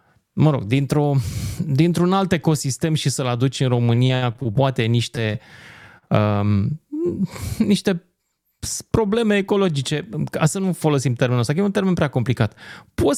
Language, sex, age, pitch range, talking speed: Romanian, male, 30-49, 125-185 Hz, 135 wpm